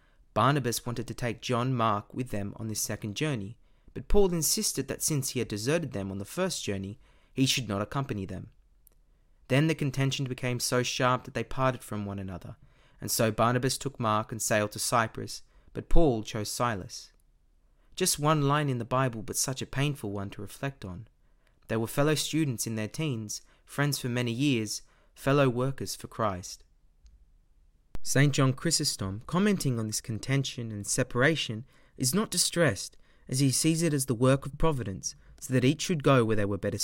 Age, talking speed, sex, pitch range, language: 30-49, 185 wpm, male, 105-140 Hz, English